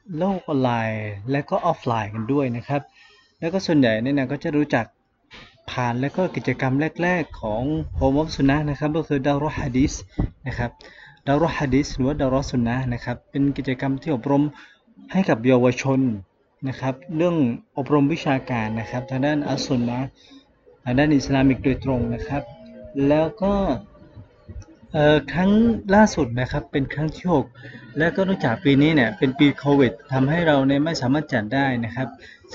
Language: Thai